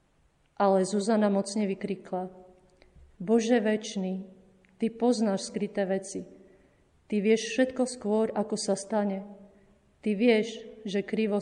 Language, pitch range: Slovak, 195-220 Hz